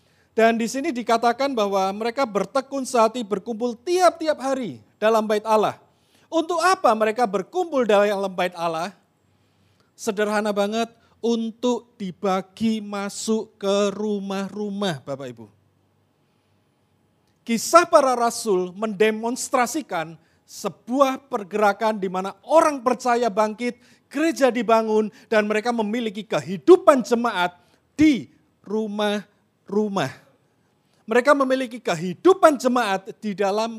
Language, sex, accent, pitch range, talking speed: Indonesian, male, native, 190-245 Hz, 100 wpm